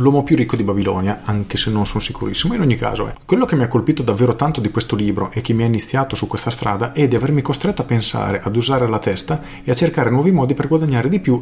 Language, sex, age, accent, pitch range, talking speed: Italian, male, 40-59, native, 105-130 Hz, 275 wpm